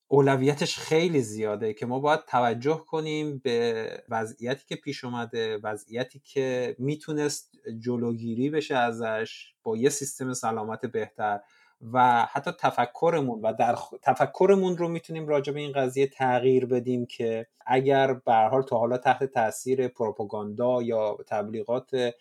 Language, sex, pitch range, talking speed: Persian, male, 120-145 Hz, 130 wpm